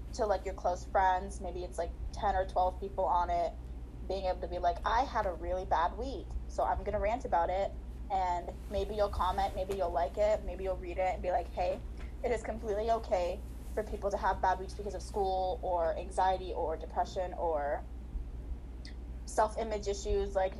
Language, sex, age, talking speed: English, female, 10-29, 200 wpm